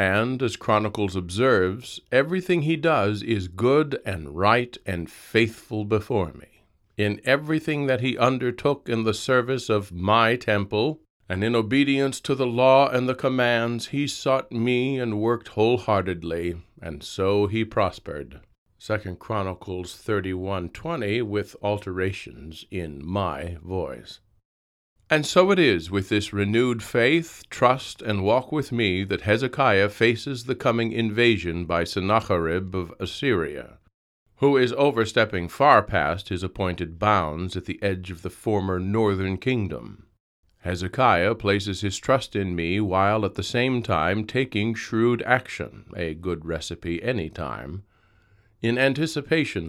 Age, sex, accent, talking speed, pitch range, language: 50-69, male, American, 140 wpm, 95-125 Hz, English